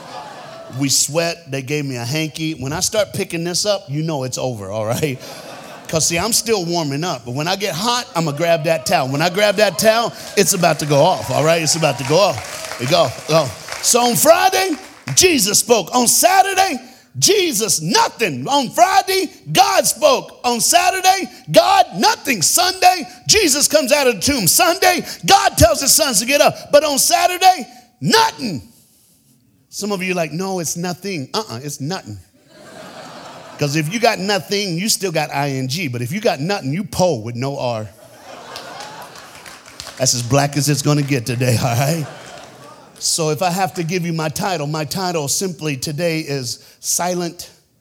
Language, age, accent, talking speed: Swedish, 50-69, American, 185 wpm